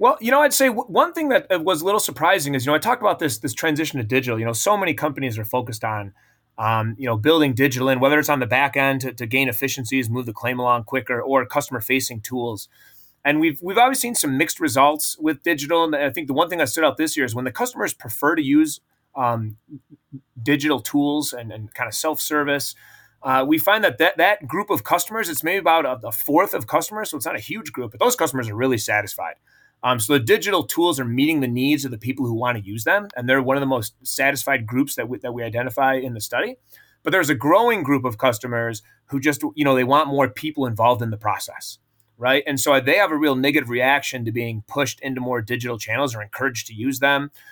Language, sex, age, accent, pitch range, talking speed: English, male, 30-49, American, 120-150 Hz, 245 wpm